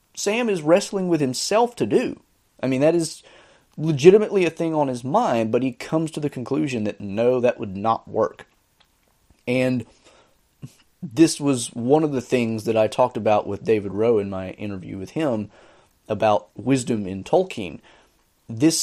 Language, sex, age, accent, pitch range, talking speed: English, male, 30-49, American, 105-135 Hz, 170 wpm